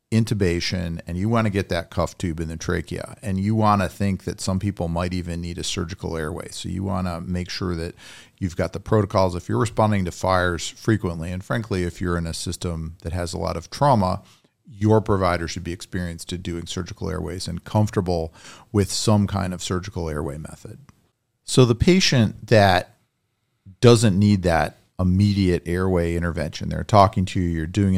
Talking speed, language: 195 wpm, English